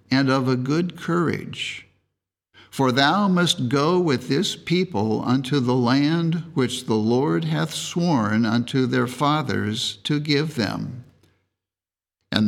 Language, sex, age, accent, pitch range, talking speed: English, male, 60-79, American, 105-145 Hz, 130 wpm